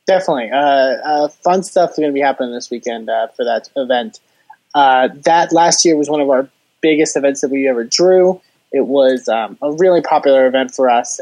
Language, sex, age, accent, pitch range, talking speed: English, male, 20-39, American, 130-155 Hz, 210 wpm